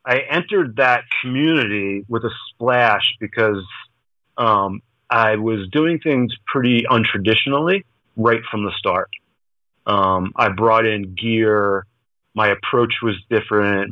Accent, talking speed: American, 120 wpm